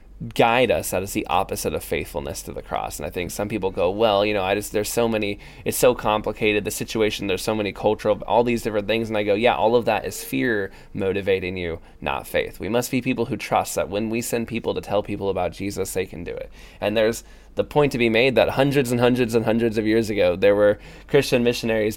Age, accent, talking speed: 20-39, American, 250 wpm